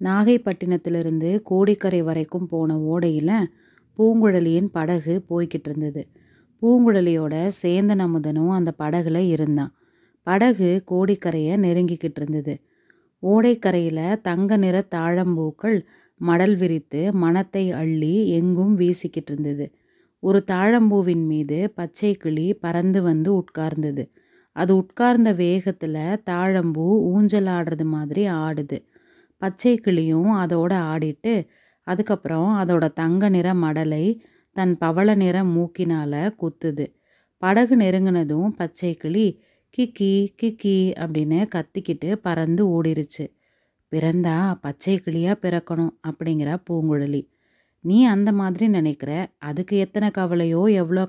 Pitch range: 160-195 Hz